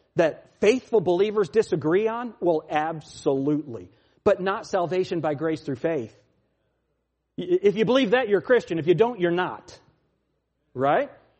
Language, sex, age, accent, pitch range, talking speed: English, male, 40-59, American, 130-215 Hz, 140 wpm